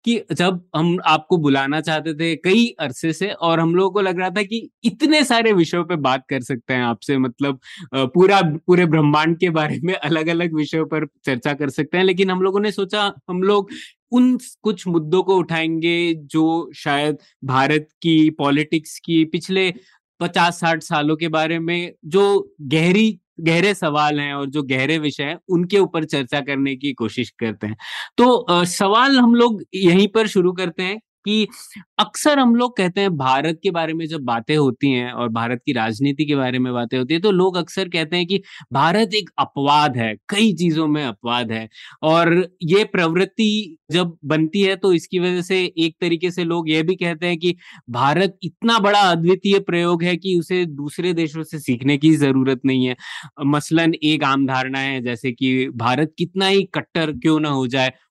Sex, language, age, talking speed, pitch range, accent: male, Hindi, 20-39, 190 wpm, 145-185 Hz, native